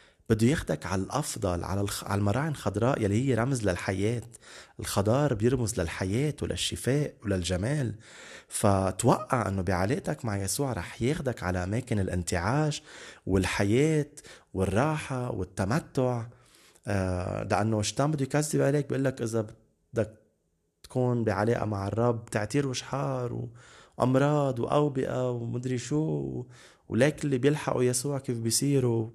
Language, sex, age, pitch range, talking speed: Arabic, male, 30-49, 100-135 Hz, 110 wpm